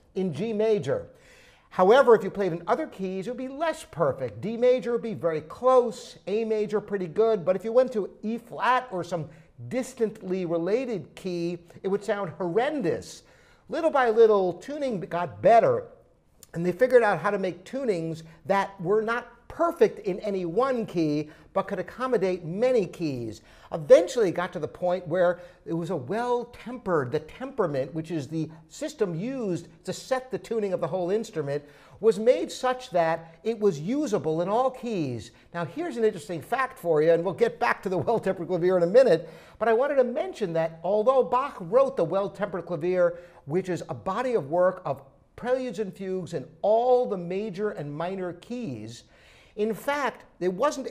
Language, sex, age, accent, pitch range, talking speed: English, male, 50-69, American, 170-235 Hz, 185 wpm